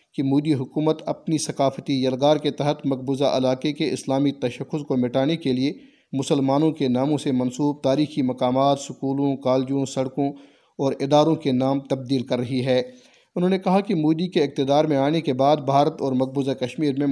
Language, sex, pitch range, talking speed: Urdu, male, 130-150 Hz, 180 wpm